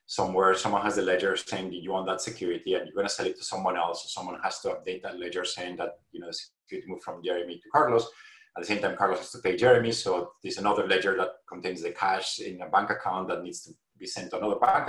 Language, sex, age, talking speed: English, male, 30-49, 260 wpm